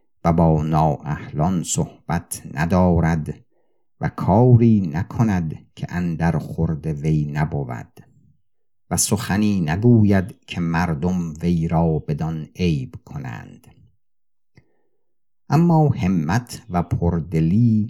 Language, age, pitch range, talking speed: Persian, 50-69, 80-115 Hz, 90 wpm